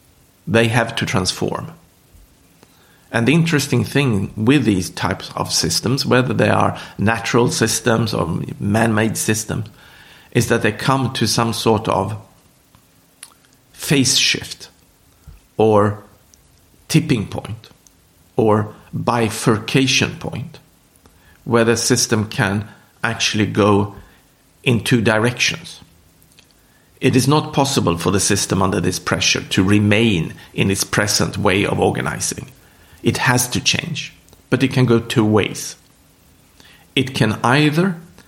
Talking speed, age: 120 wpm, 50-69